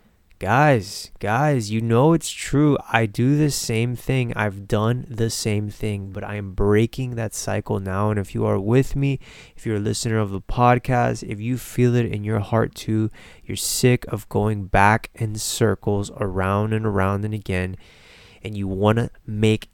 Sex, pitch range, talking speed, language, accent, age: male, 105-135 Hz, 185 wpm, English, American, 20-39